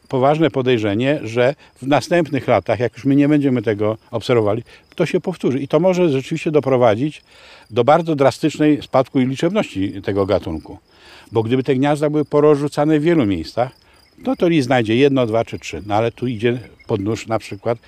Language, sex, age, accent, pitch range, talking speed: Polish, male, 50-69, native, 115-155 Hz, 180 wpm